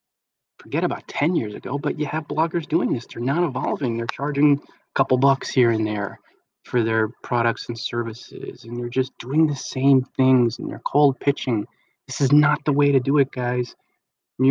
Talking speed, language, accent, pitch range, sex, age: 200 wpm, English, American, 115-140 Hz, male, 30-49